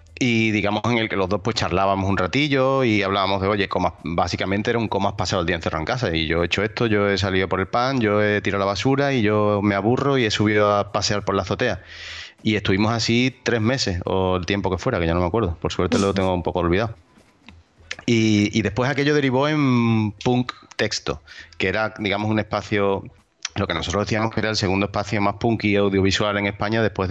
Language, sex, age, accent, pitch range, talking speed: Spanish, male, 30-49, Spanish, 95-115 Hz, 235 wpm